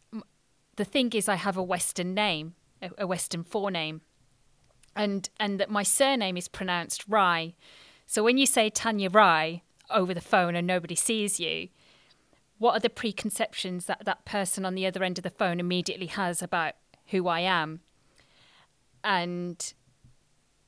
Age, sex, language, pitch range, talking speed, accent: 40-59, female, English, 165-200 Hz, 155 wpm, British